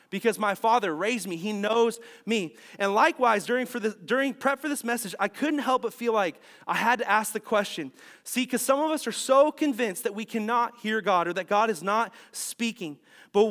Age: 30-49